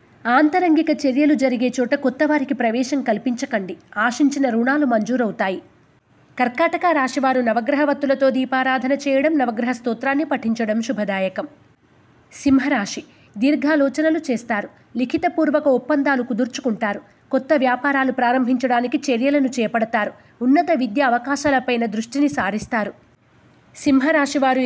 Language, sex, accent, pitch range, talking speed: Telugu, female, native, 235-290 Hz, 90 wpm